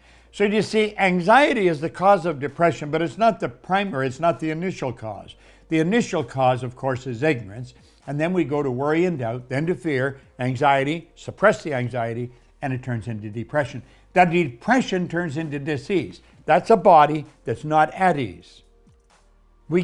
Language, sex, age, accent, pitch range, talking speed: English, male, 60-79, American, 130-190 Hz, 180 wpm